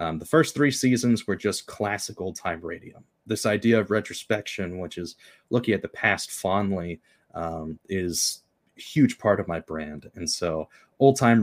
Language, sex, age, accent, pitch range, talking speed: English, male, 30-49, American, 85-110 Hz, 170 wpm